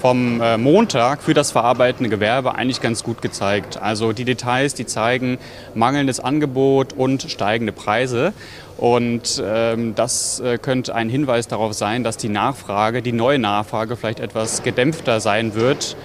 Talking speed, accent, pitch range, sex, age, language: 140 wpm, German, 115-135 Hz, male, 30-49, German